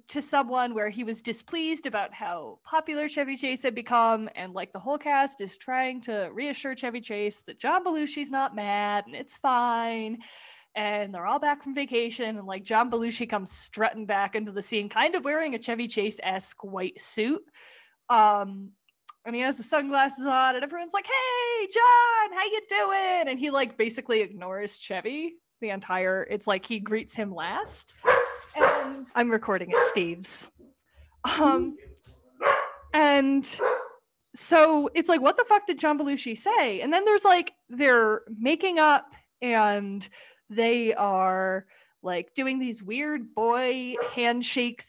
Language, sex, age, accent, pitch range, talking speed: English, female, 20-39, American, 215-300 Hz, 155 wpm